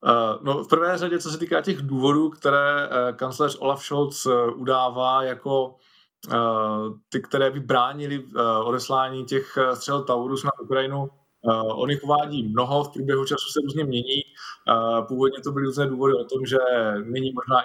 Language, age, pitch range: Slovak, 20-39, 115-135 Hz